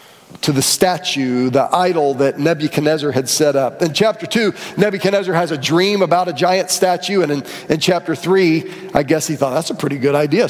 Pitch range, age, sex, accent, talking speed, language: 150-195 Hz, 40-59, male, American, 200 wpm, English